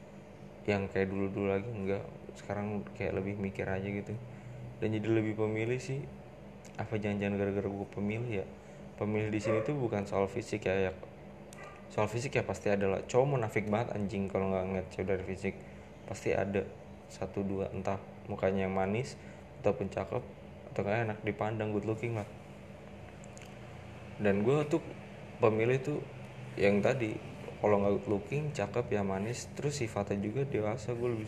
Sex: male